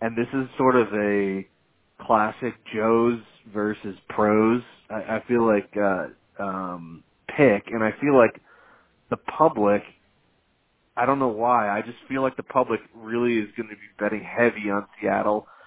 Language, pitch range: English, 100-115 Hz